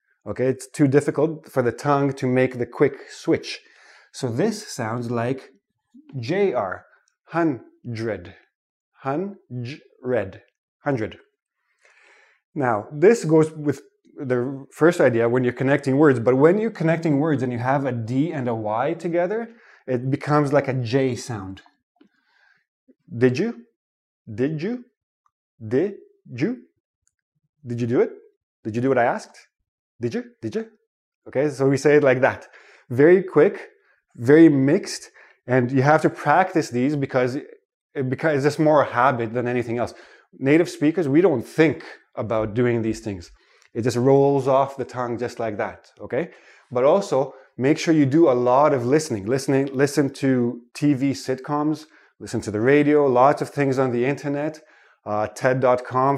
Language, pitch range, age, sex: Chinese, 125-155 Hz, 20-39, male